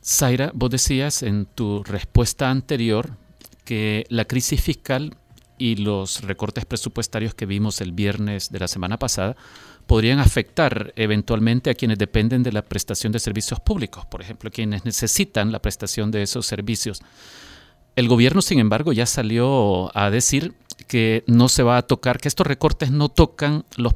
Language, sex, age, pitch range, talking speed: Spanish, male, 40-59, 110-140 Hz, 160 wpm